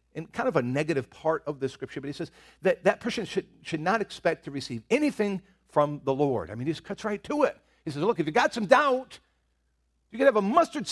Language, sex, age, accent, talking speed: English, male, 50-69, American, 255 wpm